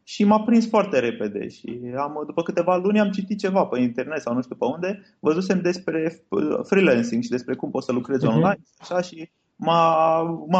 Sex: male